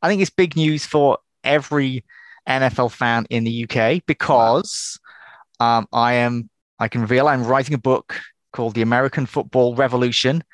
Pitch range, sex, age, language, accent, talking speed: 115-135 Hz, male, 20-39, English, British, 155 wpm